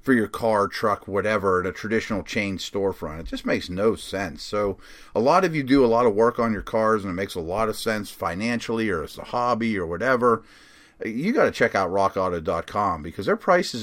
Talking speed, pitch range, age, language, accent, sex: 220 wpm, 95-115 Hz, 30-49, English, American, male